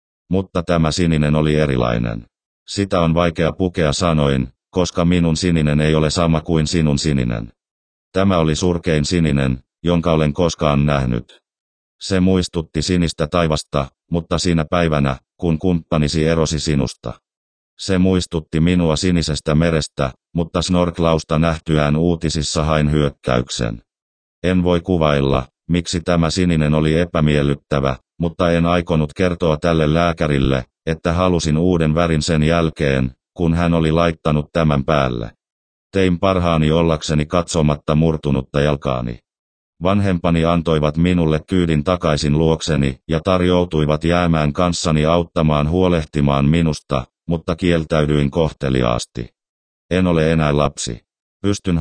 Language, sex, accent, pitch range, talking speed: Finnish, male, native, 75-85 Hz, 120 wpm